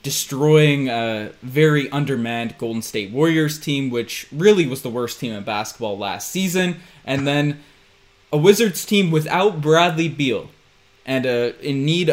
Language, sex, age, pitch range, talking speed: English, male, 20-39, 120-150 Hz, 150 wpm